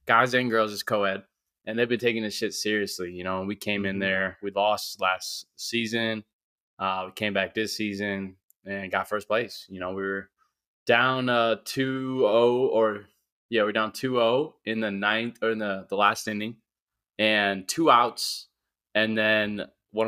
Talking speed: 190 wpm